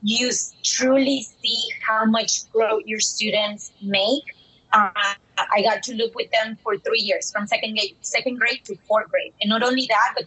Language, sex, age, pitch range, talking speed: English, female, 20-39, 205-250 Hz, 185 wpm